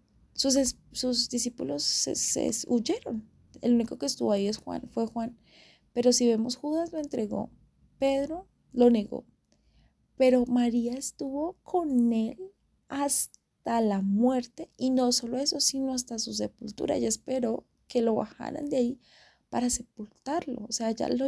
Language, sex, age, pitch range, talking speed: Spanish, female, 20-39, 220-260 Hz, 150 wpm